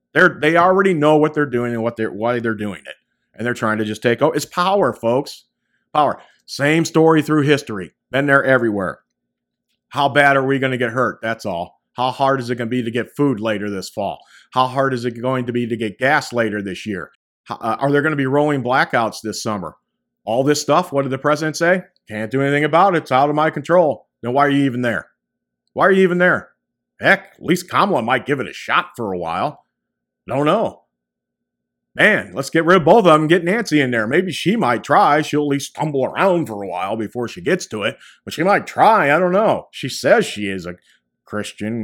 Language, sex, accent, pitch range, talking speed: English, male, American, 110-150 Hz, 240 wpm